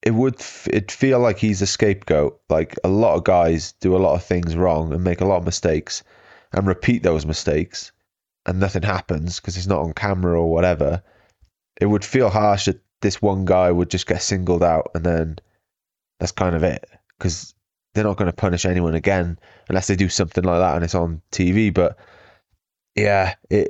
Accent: British